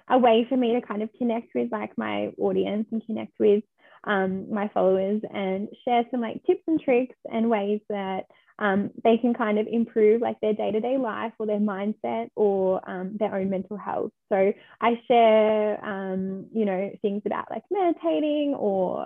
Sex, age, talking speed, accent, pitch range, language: female, 10-29, 185 wpm, Australian, 205-245 Hz, English